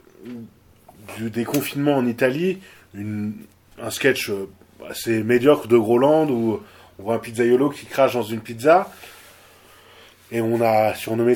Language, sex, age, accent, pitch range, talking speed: French, male, 20-39, French, 110-135 Hz, 130 wpm